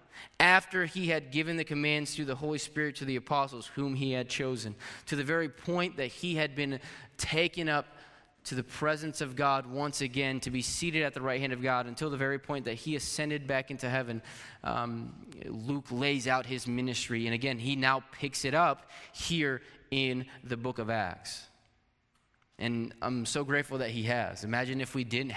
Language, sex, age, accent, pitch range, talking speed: English, male, 20-39, American, 120-145 Hz, 195 wpm